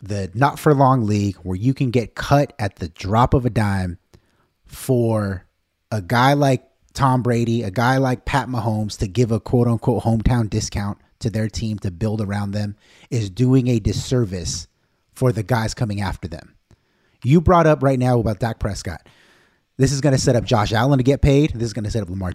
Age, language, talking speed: 30-49, English, 205 wpm